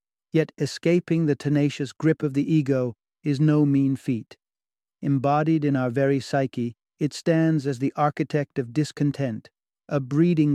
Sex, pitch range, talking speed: male, 135-155 Hz, 150 wpm